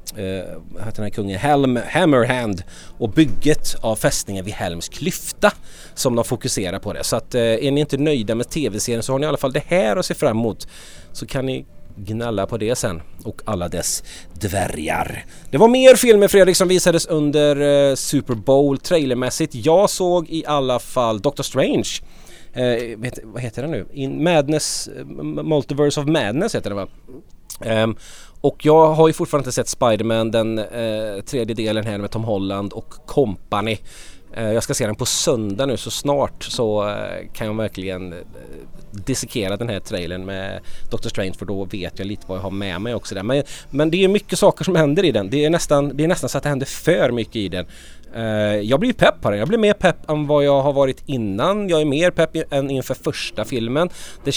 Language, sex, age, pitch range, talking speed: English, male, 30-49, 105-145 Hz, 205 wpm